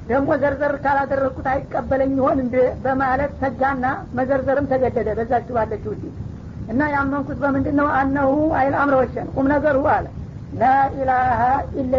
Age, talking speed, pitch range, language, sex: 50-69, 125 wpm, 255-275 Hz, Amharic, female